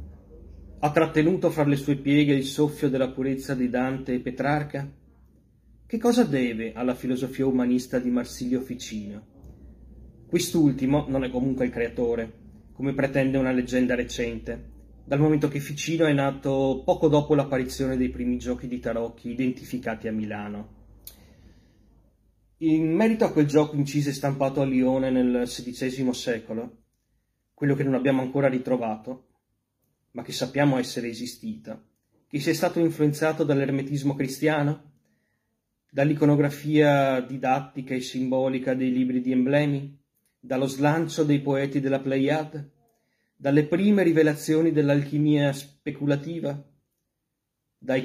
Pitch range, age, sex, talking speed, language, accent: 125-145 Hz, 30-49, male, 125 wpm, Italian, native